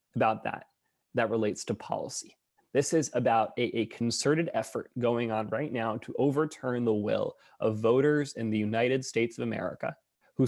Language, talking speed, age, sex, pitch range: English, 170 wpm, 20-39, male, 115-150 Hz